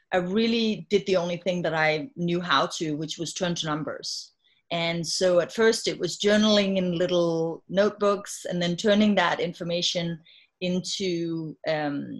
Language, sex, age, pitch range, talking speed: English, female, 30-49, 175-205 Hz, 160 wpm